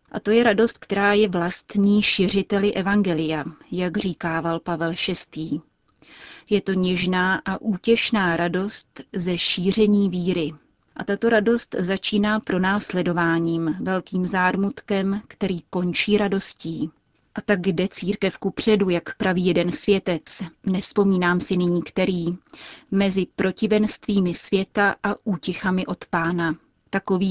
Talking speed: 115 wpm